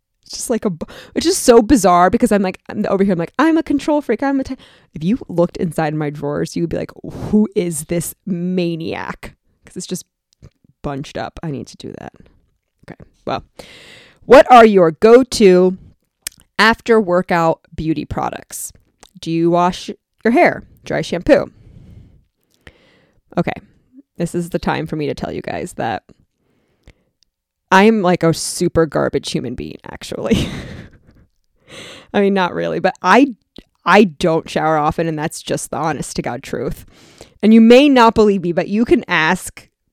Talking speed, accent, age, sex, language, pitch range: 165 wpm, American, 20-39, female, English, 175-230 Hz